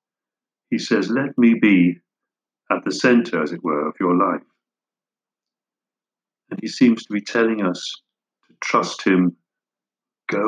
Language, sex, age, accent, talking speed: English, male, 50-69, British, 145 wpm